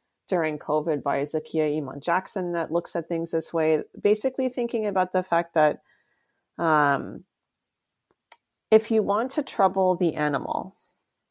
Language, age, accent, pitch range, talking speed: English, 30-49, American, 160-210 Hz, 140 wpm